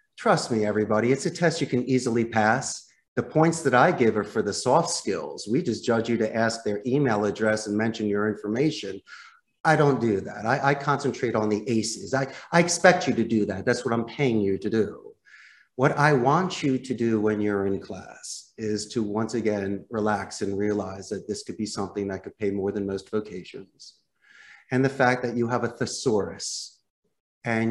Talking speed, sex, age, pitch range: 205 wpm, male, 40-59, 110-140 Hz